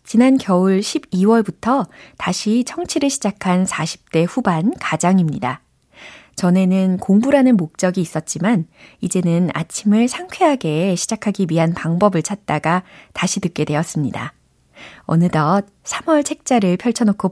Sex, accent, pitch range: female, native, 165-230 Hz